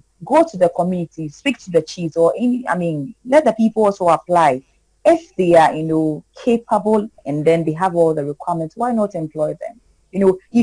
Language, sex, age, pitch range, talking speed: English, female, 30-49, 155-210 Hz, 210 wpm